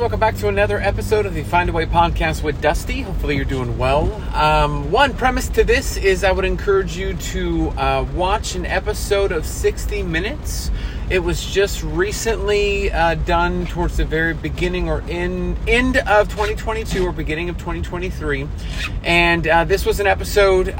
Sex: male